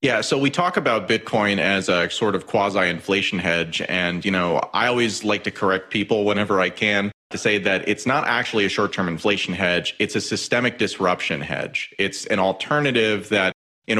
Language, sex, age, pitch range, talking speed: English, male, 30-49, 95-110 Hz, 190 wpm